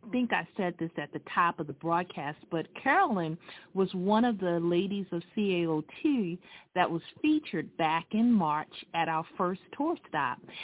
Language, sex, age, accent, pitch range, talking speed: English, female, 40-59, American, 170-220 Hz, 175 wpm